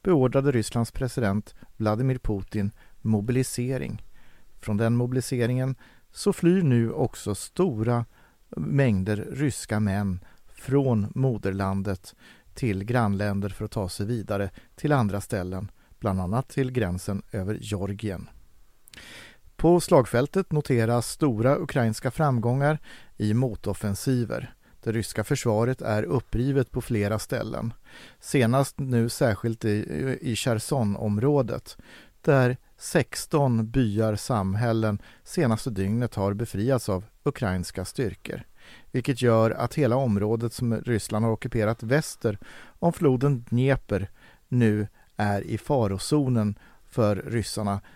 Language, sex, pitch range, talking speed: Swedish, male, 105-130 Hz, 110 wpm